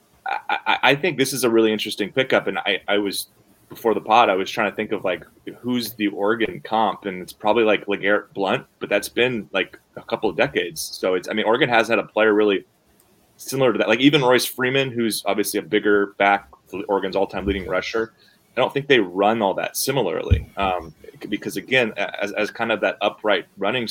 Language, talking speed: English, 215 wpm